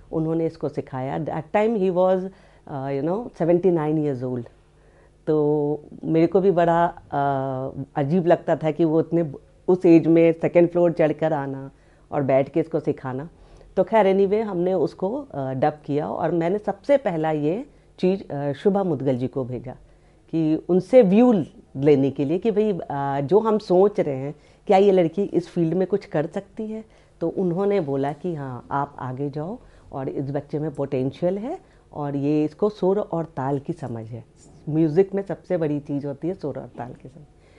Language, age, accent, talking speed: Hindi, 50-69, native, 185 wpm